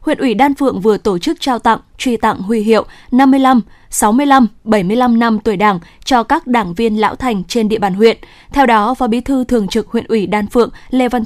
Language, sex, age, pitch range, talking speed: Vietnamese, female, 10-29, 210-255 Hz, 225 wpm